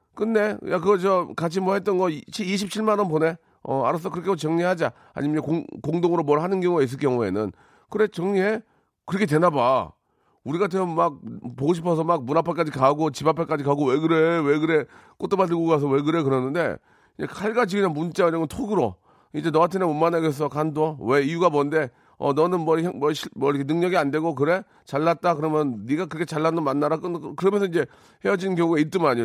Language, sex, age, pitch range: Korean, male, 40-59, 130-180 Hz